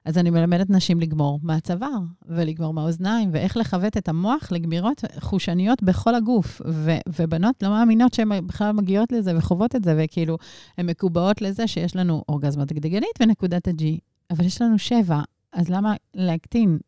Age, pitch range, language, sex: 30-49, 160-205 Hz, Hebrew, female